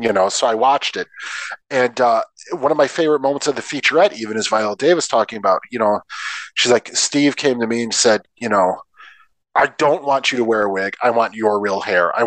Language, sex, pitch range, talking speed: English, male, 120-195 Hz, 235 wpm